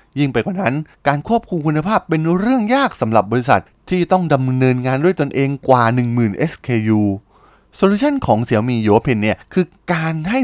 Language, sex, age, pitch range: Thai, male, 20-39, 110-175 Hz